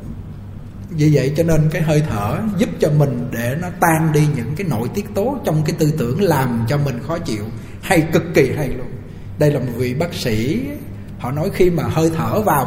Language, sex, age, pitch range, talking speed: Vietnamese, male, 20-39, 120-165 Hz, 220 wpm